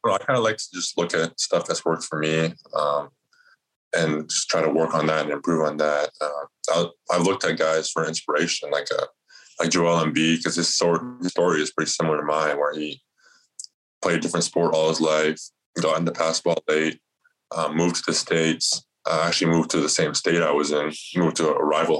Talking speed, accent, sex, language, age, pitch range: 220 wpm, American, male, English, 20-39, 75-80 Hz